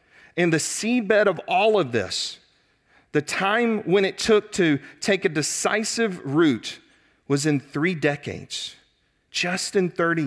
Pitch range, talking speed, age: 130-180 Hz, 140 wpm, 40-59